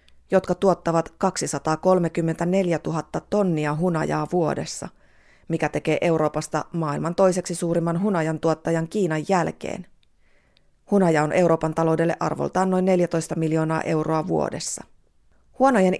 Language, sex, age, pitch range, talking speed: Finnish, female, 30-49, 155-180 Hz, 105 wpm